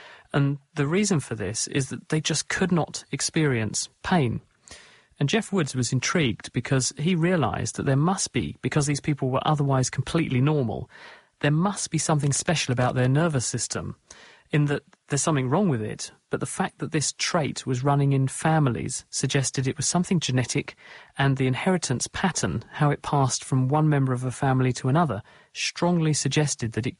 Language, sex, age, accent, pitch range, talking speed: English, male, 40-59, British, 125-155 Hz, 180 wpm